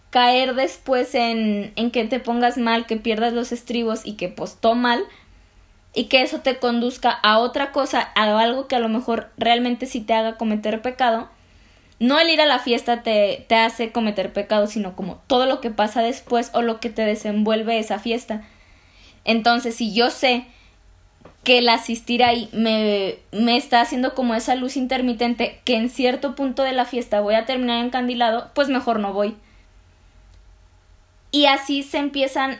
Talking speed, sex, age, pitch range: 175 wpm, female, 20-39, 220-255 Hz